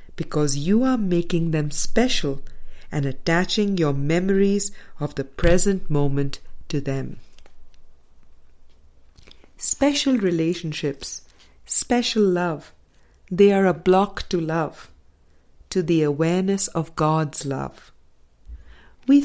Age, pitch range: 50-69, 130-185 Hz